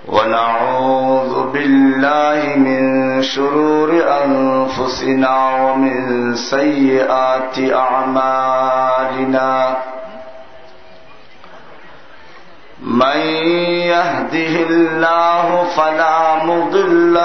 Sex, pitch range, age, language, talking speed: male, 130-165 Hz, 50-69, Bengali, 45 wpm